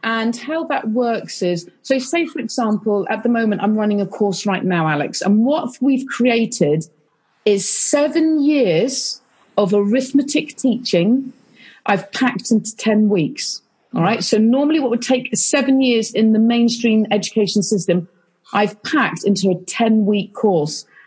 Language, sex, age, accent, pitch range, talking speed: English, female, 40-59, British, 195-255 Hz, 155 wpm